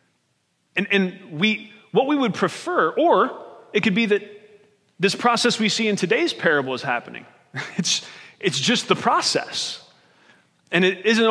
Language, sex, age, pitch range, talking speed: English, male, 30-49, 185-240 Hz, 155 wpm